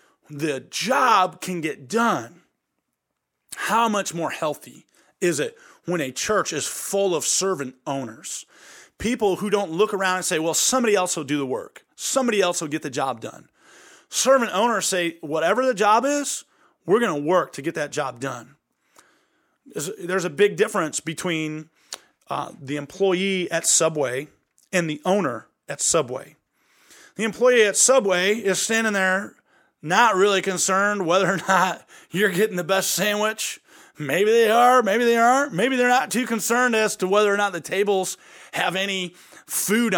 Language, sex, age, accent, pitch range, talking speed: English, male, 30-49, American, 165-225 Hz, 165 wpm